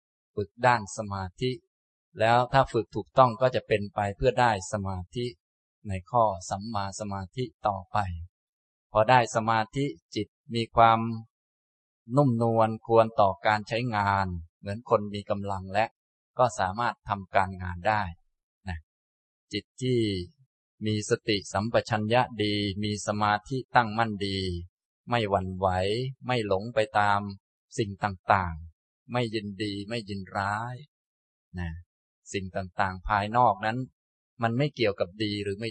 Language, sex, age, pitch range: Thai, male, 20-39, 95-120 Hz